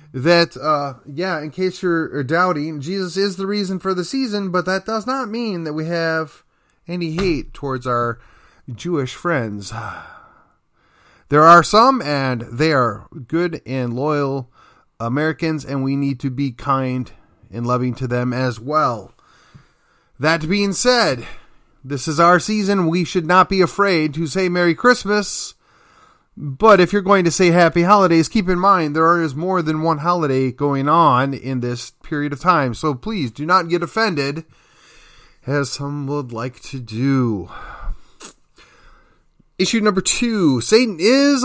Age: 30-49